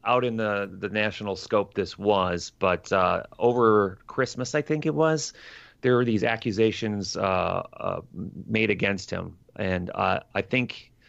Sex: male